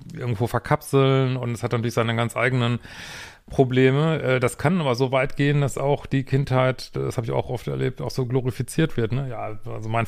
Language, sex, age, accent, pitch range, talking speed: German, male, 30-49, German, 115-130 Hz, 200 wpm